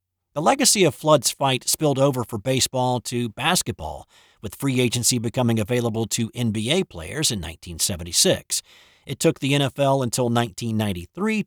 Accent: American